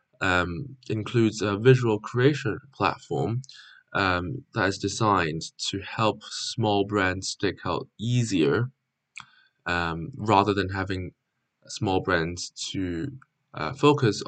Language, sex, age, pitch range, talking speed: English, male, 10-29, 95-135 Hz, 110 wpm